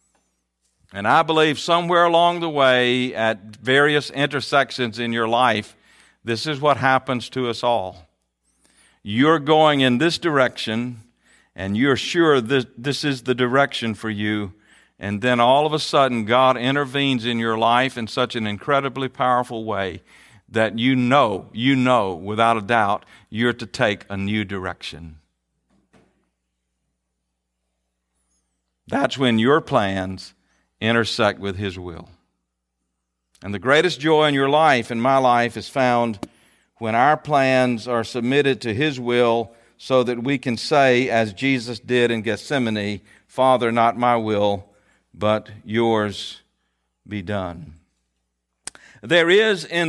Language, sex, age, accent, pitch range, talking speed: English, male, 50-69, American, 100-130 Hz, 140 wpm